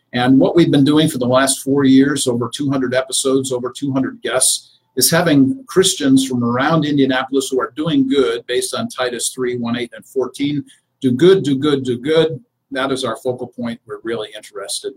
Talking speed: 190 wpm